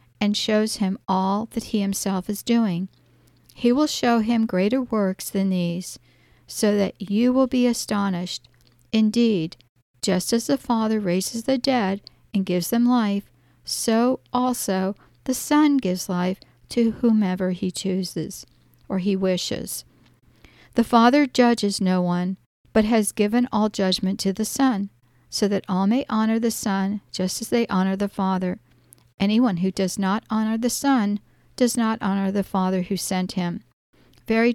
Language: English